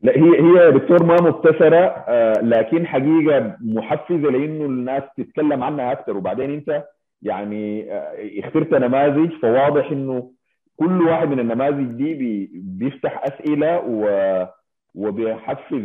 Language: Arabic